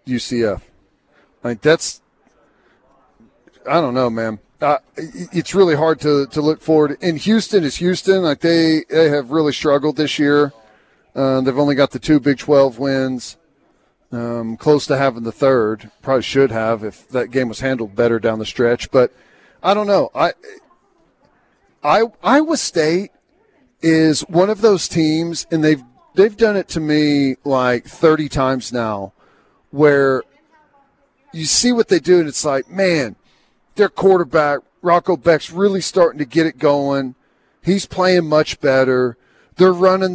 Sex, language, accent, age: male, English, American, 40-59